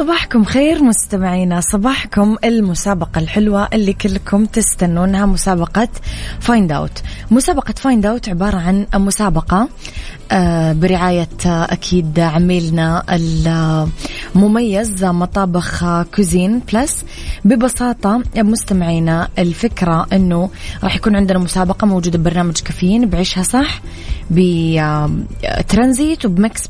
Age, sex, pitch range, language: 20-39, female, 175-220 Hz, English